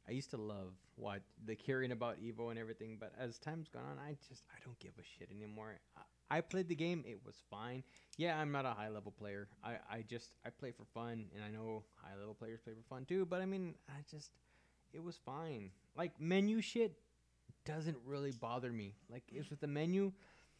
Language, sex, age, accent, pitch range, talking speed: English, male, 20-39, American, 115-150 Hz, 220 wpm